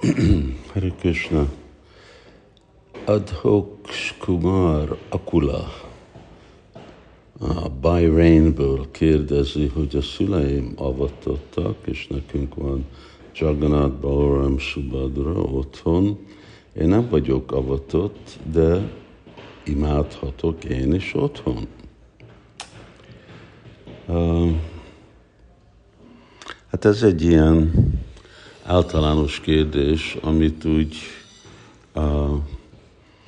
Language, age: Hungarian, 60-79